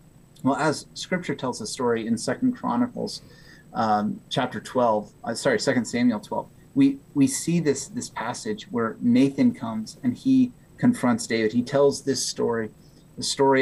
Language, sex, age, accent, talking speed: English, male, 30-49, American, 160 wpm